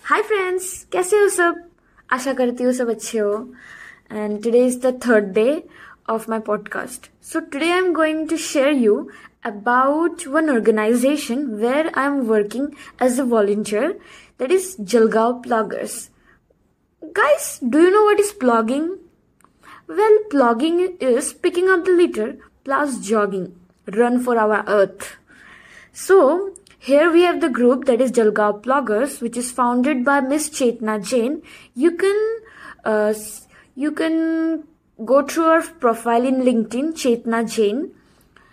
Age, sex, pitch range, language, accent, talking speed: 20-39, female, 225-315 Hz, English, Indian, 130 wpm